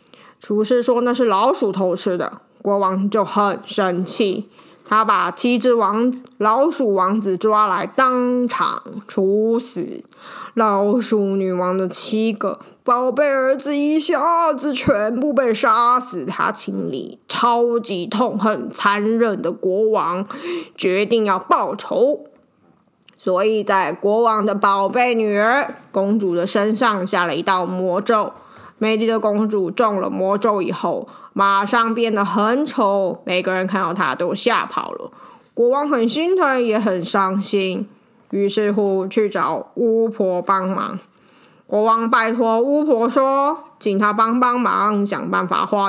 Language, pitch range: Chinese, 195-240 Hz